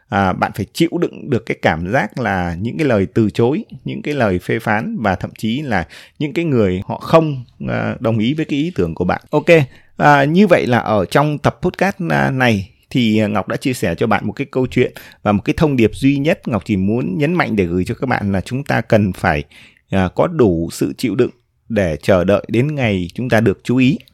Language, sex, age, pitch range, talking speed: Vietnamese, male, 20-39, 100-140 Hz, 235 wpm